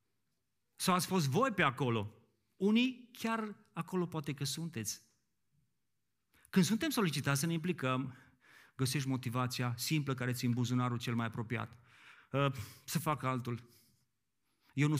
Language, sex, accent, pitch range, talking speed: Romanian, male, native, 125-160 Hz, 130 wpm